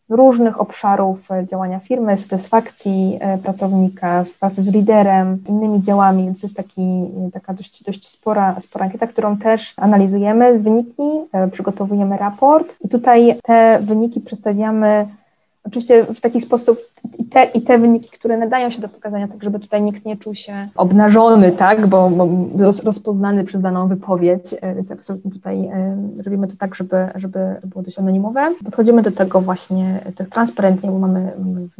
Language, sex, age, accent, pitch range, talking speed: Polish, female, 20-39, native, 185-220 Hz, 155 wpm